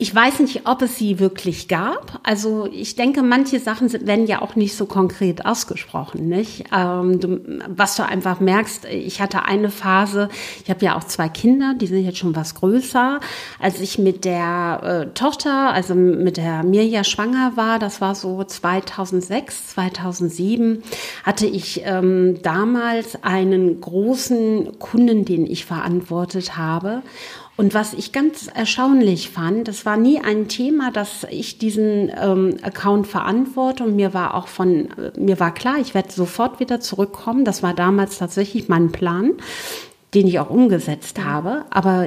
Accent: German